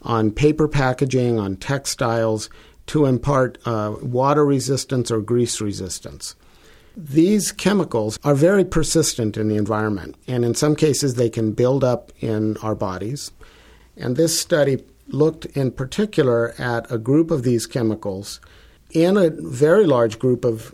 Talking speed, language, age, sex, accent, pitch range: 145 wpm, English, 50-69, male, American, 110-140 Hz